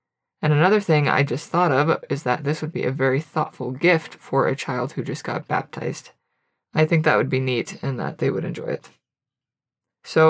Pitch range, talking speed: 135-165 Hz, 210 wpm